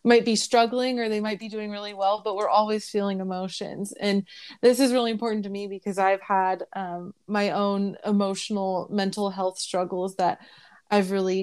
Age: 20-39